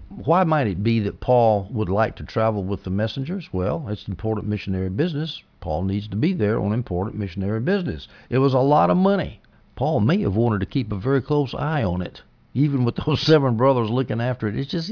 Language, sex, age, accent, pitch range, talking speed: English, male, 60-79, American, 100-130 Hz, 220 wpm